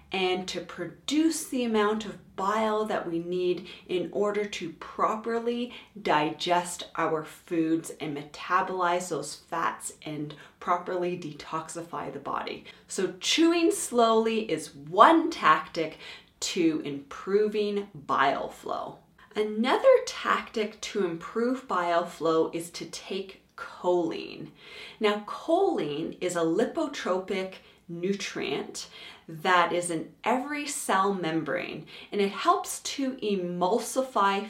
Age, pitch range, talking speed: 30-49, 175-255 Hz, 110 wpm